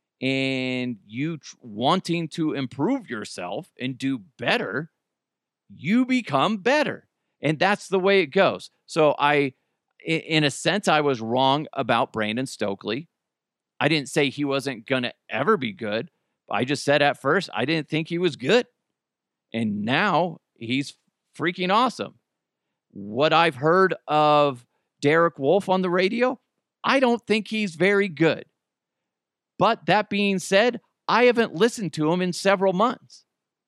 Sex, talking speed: male, 150 wpm